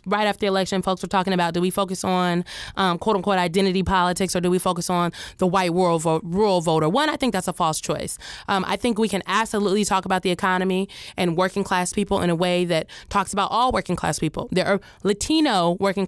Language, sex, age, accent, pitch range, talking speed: English, female, 20-39, American, 185-245 Hz, 230 wpm